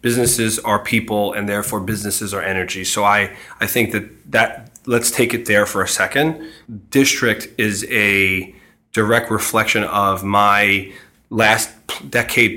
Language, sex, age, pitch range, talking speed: English, male, 30-49, 100-120 Hz, 145 wpm